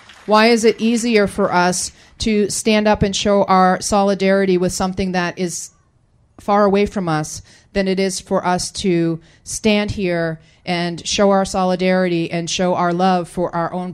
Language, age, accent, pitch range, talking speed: English, 30-49, American, 175-200 Hz, 170 wpm